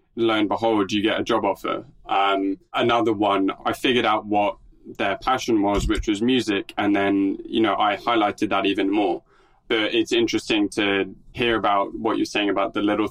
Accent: British